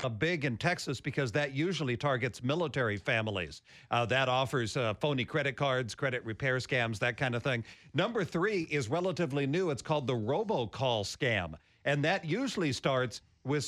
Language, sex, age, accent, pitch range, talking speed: English, male, 50-69, American, 125-165 Hz, 170 wpm